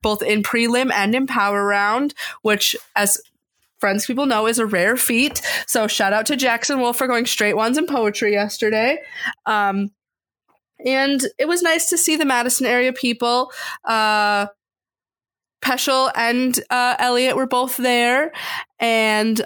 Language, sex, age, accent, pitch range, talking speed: English, female, 20-39, American, 210-265 Hz, 150 wpm